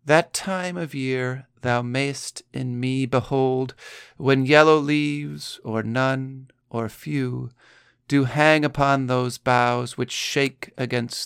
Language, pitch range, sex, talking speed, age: English, 120-140 Hz, male, 130 wpm, 40-59